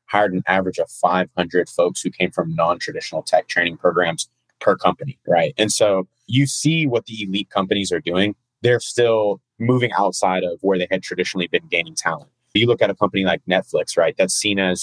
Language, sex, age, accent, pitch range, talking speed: English, male, 30-49, American, 95-120 Hz, 200 wpm